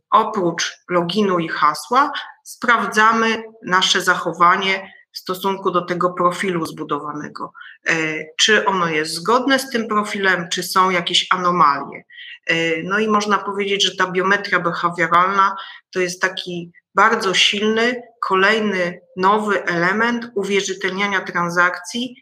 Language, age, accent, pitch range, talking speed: Polish, 30-49, native, 175-200 Hz, 115 wpm